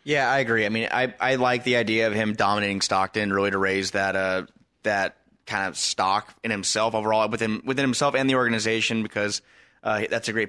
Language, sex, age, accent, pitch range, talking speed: English, male, 20-39, American, 105-125 Hz, 210 wpm